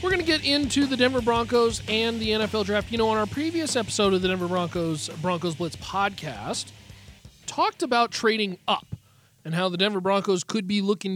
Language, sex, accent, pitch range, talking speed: English, male, American, 180-230 Hz, 200 wpm